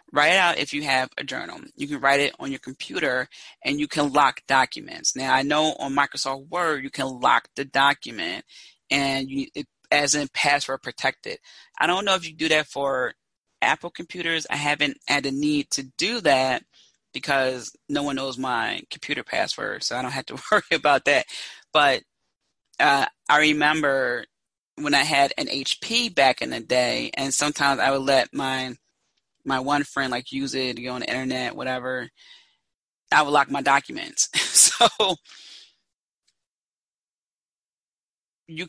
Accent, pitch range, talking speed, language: American, 135-155 Hz, 165 wpm, English